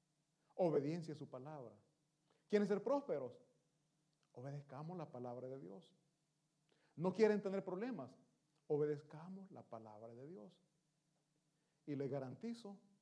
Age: 40-59